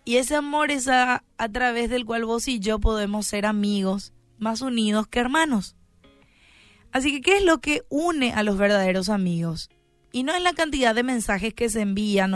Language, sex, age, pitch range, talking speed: Spanish, female, 20-39, 195-255 Hz, 190 wpm